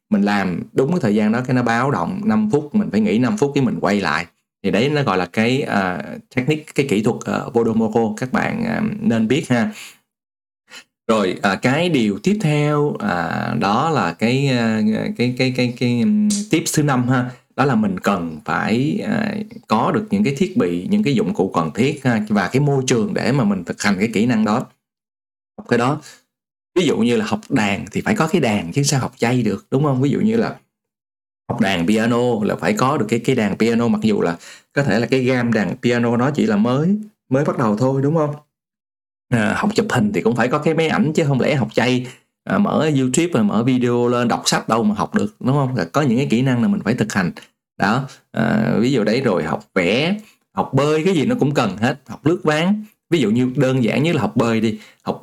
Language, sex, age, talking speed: Vietnamese, male, 20-39, 240 wpm